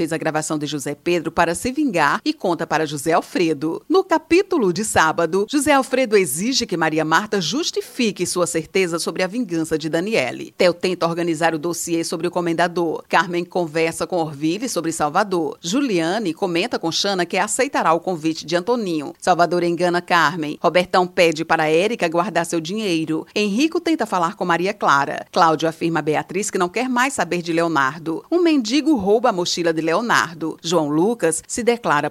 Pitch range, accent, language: 165-235 Hz, Brazilian, Portuguese